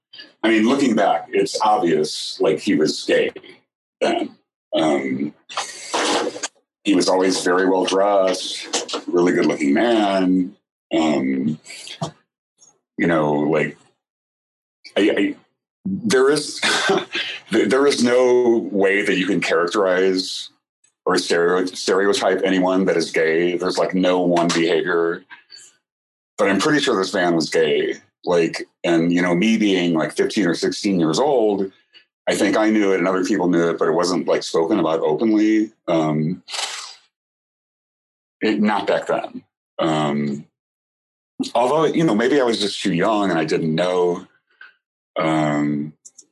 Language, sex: English, male